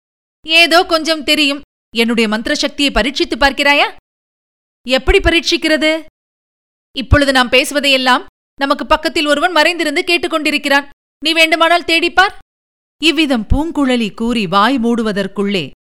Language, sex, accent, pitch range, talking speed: Tamil, female, native, 220-295 Hz, 95 wpm